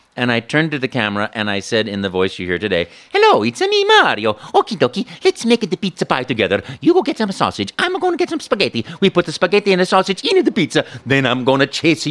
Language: German